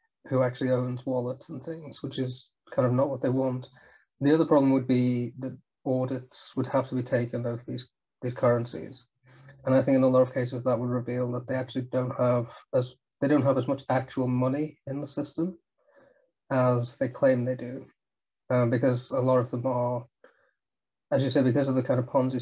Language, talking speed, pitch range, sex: English, 210 wpm, 125-140 Hz, male